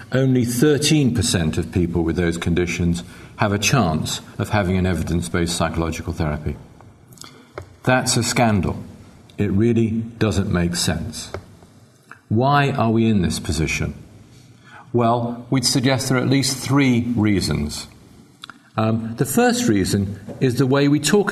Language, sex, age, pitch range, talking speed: English, male, 50-69, 95-130 Hz, 135 wpm